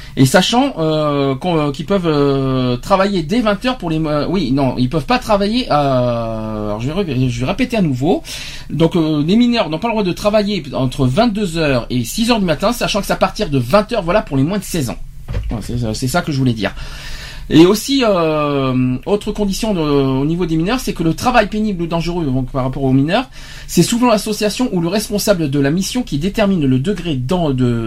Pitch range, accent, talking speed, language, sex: 135-205 Hz, French, 215 wpm, French, male